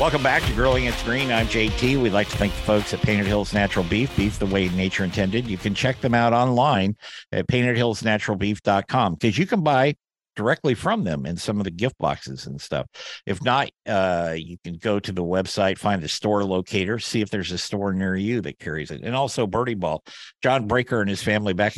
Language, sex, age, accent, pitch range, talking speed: English, male, 50-69, American, 95-115 Hz, 220 wpm